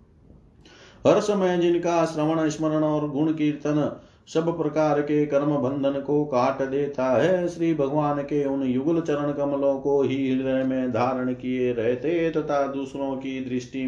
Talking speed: 150 wpm